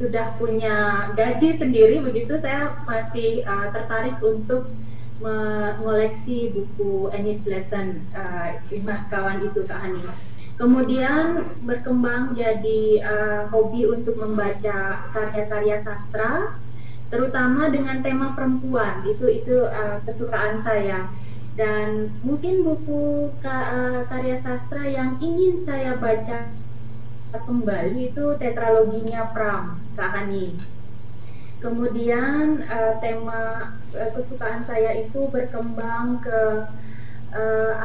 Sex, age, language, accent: female, 20-39, Indonesian, native